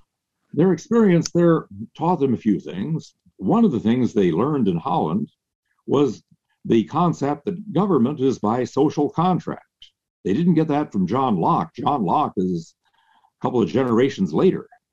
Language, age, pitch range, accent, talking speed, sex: English, 60-79, 100-170 Hz, American, 160 wpm, male